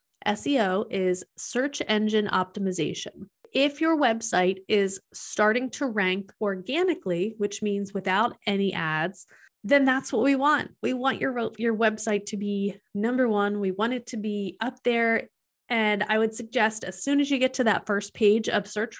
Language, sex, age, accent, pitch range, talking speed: English, female, 30-49, American, 195-240 Hz, 170 wpm